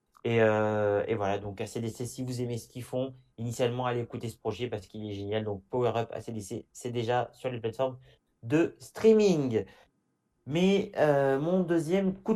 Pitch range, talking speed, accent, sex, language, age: 115-150 Hz, 180 wpm, French, male, French, 30-49